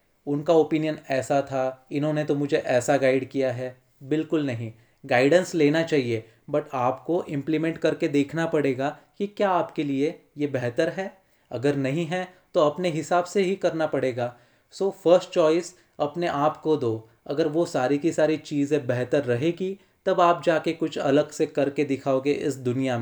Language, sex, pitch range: Hindi, male, 135-165 Hz